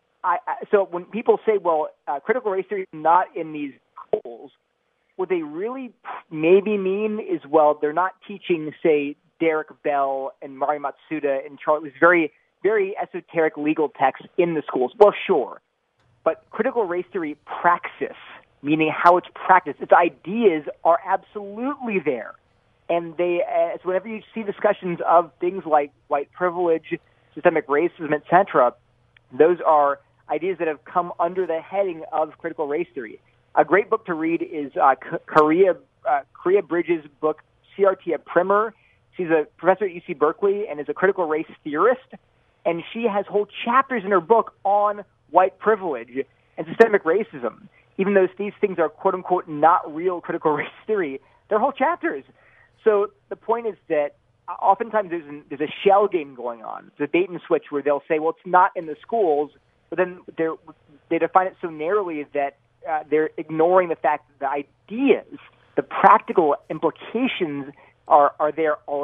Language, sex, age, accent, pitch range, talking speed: English, male, 30-49, American, 150-200 Hz, 165 wpm